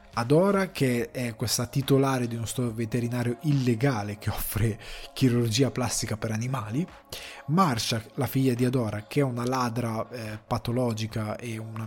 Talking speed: 145 wpm